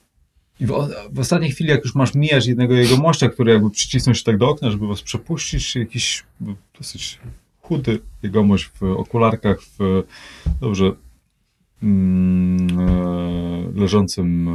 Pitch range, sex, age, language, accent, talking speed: 90-125 Hz, male, 30-49, Polish, native, 125 wpm